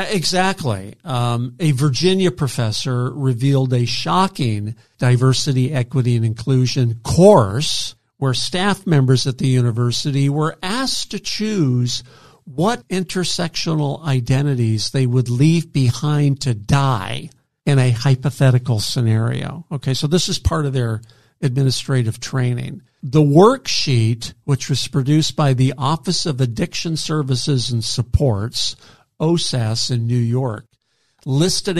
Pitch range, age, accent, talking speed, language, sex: 125-160 Hz, 50-69, American, 120 wpm, English, male